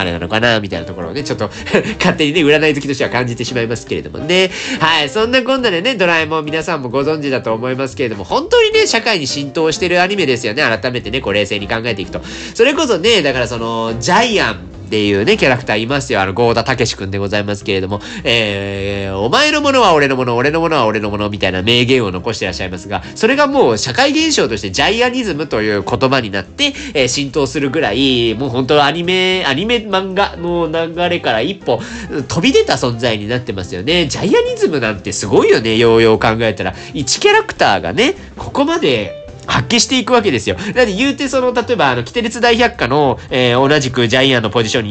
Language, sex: Japanese, male